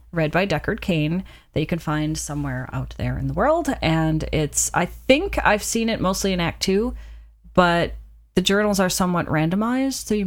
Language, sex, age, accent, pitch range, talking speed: English, female, 30-49, American, 155-200 Hz, 195 wpm